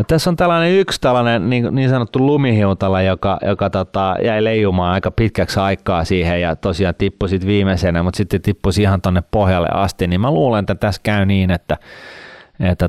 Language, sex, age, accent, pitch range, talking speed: Finnish, male, 30-49, native, 85-100 Hz, 175 wpm